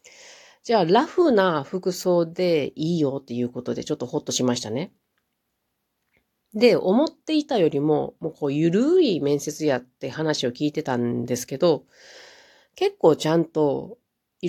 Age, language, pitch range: 40-59, Japanese, 130-185 Hz